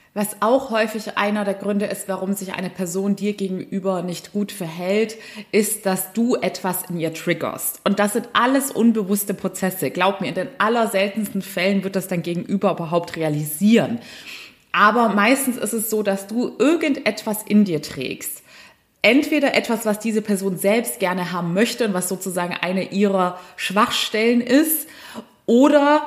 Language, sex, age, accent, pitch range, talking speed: German, female, 20-39, German, 185-230 Hz, 160 wpm